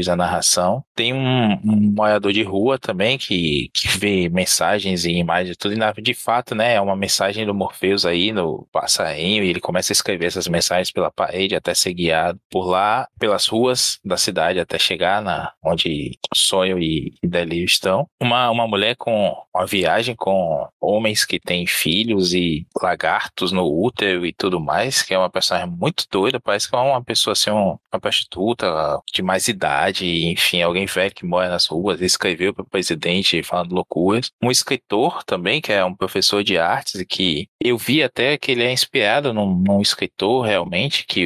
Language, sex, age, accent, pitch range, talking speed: Portuguese, male, 20-39, Brazilian, 90-105 Hz, 185 wpm